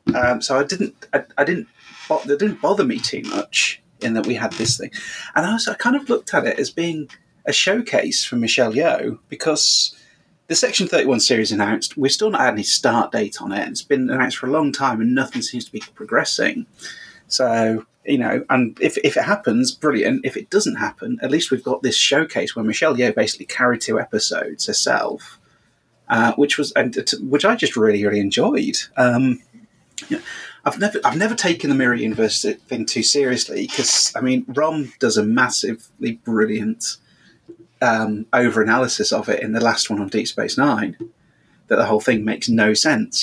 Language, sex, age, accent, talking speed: English, male, 30-49, British, 195 wpm